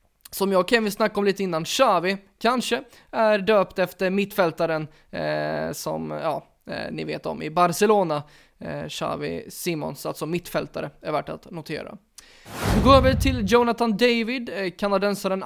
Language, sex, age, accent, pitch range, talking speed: Swedish, male, 20-39, native, 160-205 Hz, 160 wpm